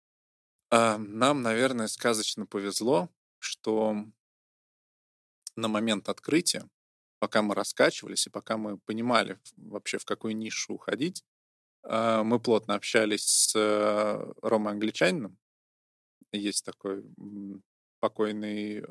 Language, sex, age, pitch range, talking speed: Russian, male, 20-39, 100-115 Hz, 90 wpm